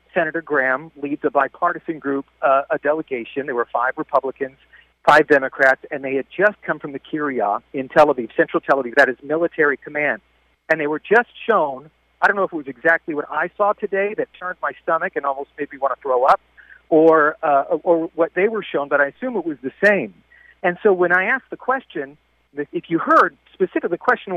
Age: 50-69